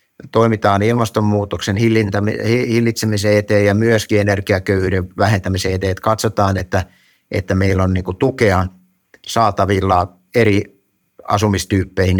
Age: 60-79